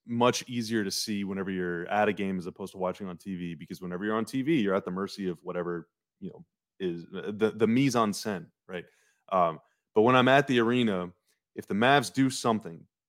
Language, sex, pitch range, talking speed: English, male, 90-115 Hz, 205 wpm